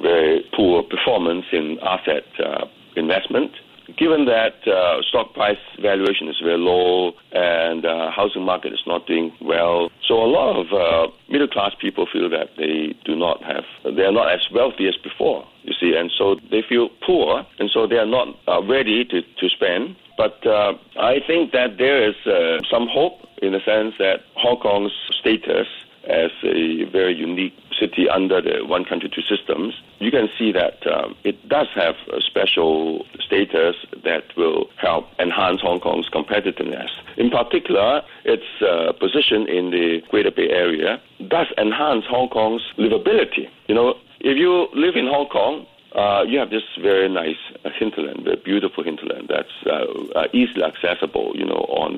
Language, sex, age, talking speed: English, male, 60-79, 170 wpm